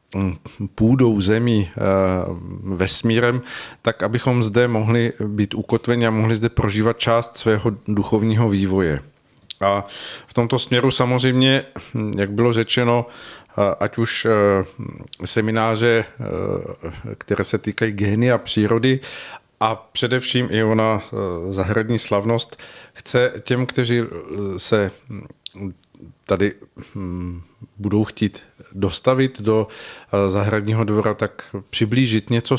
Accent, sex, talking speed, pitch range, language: native, male, 100 wpm, 105-120 Hz, Czech